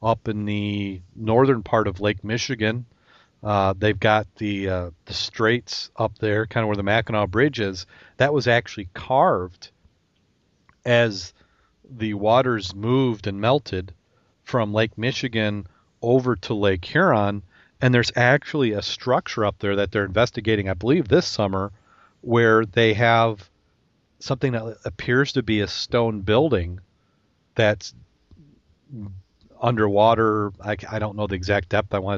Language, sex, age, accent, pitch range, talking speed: English, male, 40-59, American, 100-115 Hz, 145 wpm